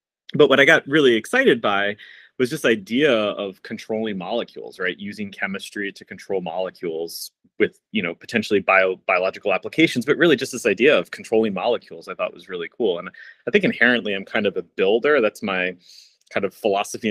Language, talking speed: English, 180 wpm